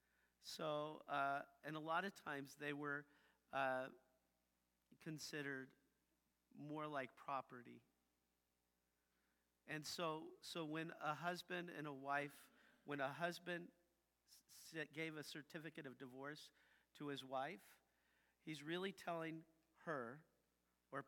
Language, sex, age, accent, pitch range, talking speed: English, male, 50-69, American, 125-155 Hz, 115 wpm